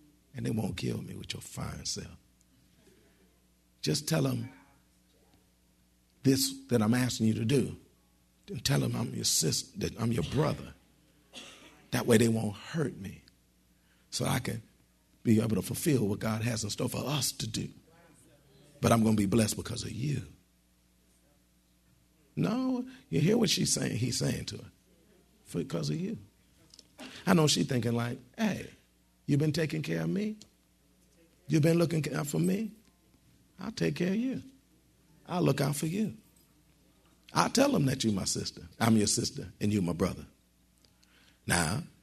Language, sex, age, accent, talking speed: English, male, 50-69, American, 165 wpm